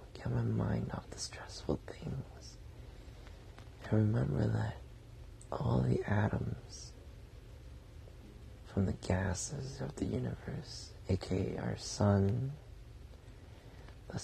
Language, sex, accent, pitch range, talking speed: English, male, American, 95-115 Hz, 95 wpm